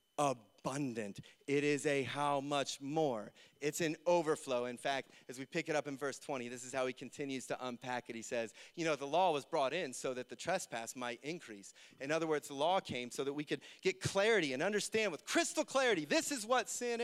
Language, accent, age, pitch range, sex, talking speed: English, American, 30-49, 150-250 Hz, male, 225 wpm